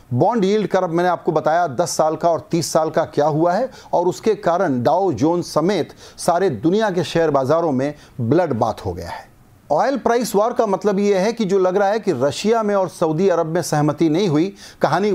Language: Hindi